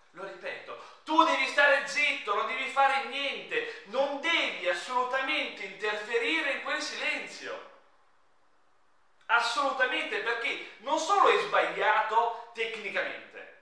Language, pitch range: Italian, 255-345 Hz